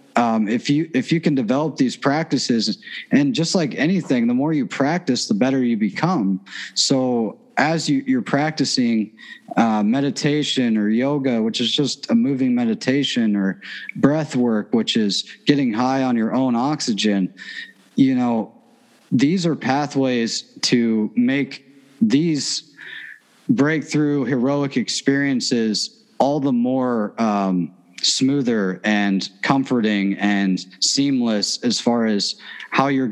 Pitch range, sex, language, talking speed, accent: 115-150 Hz, male, English, 130 wpm, American